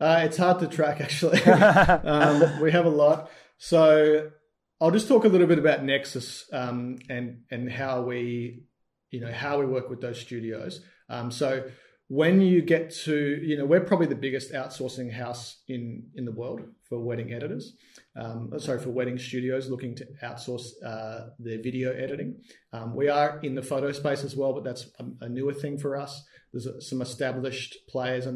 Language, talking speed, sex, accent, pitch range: English, 190 wpm, male, Australian, 125-150 Hz